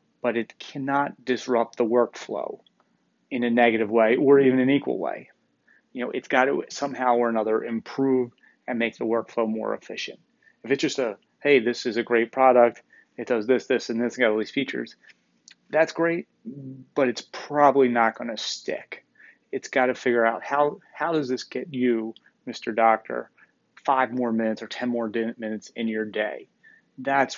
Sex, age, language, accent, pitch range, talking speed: male, 30-49, English, American, 115-130 Hz, 185 wpm